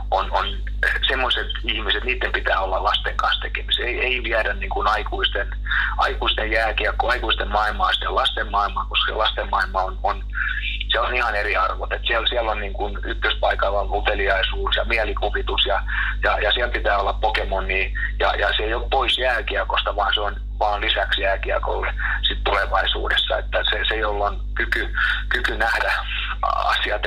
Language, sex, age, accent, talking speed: Finnish, male, 30-49, native, 170 wpm